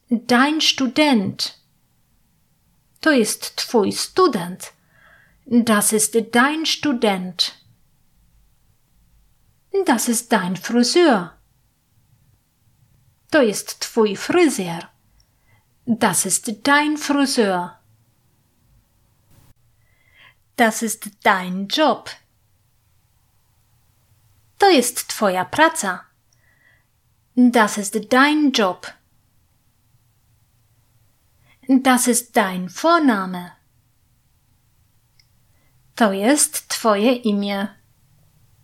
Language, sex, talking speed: Polish, female, 65 wpm